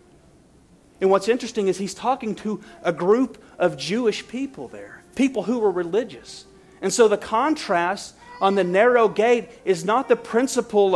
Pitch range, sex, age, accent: 165-215 Hz, male, 40-59, American